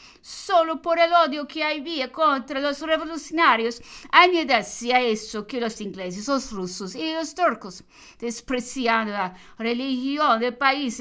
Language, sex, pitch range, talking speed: English, female, 195-270 Hz, 135 wpm